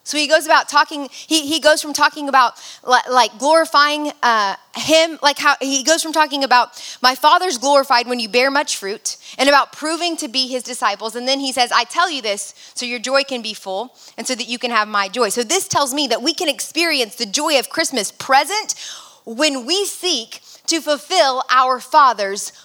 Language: English